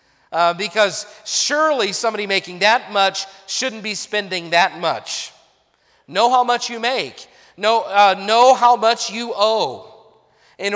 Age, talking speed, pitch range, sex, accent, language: 40-59, 140 wpm, 185-230 Hz, male, American, English